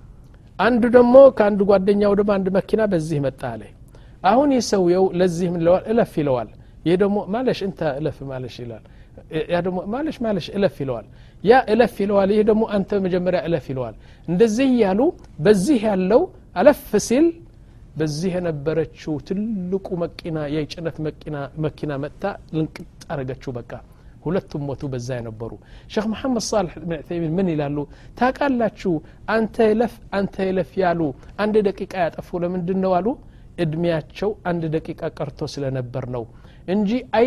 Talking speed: 120 wpm